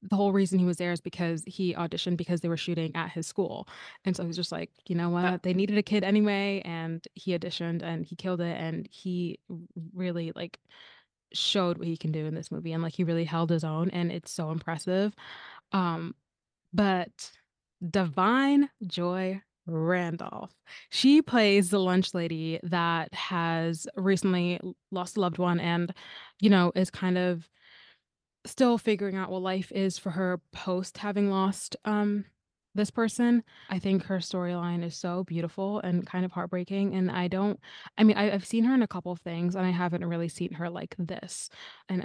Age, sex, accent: 20-39, female, American